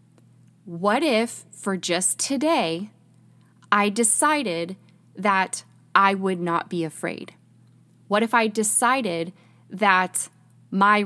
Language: English